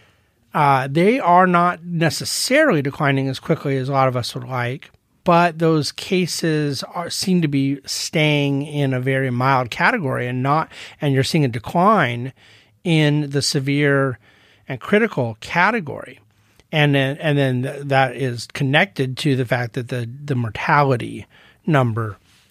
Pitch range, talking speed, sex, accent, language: 130-160 Hz, 150 wpm, male, American, English